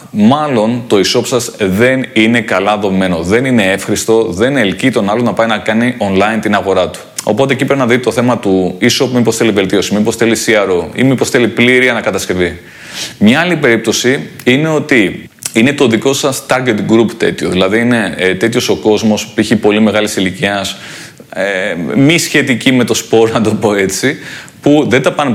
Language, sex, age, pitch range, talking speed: Greek, male, 30-49, 105-130 Hz, 185 wpm